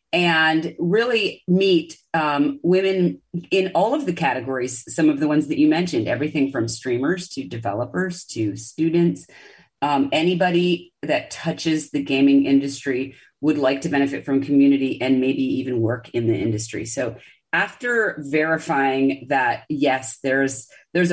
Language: English